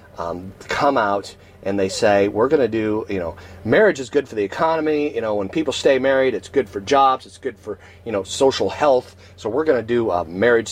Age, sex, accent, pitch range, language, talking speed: 30-49, male, American, 95-115 Hz, English, 235 wpm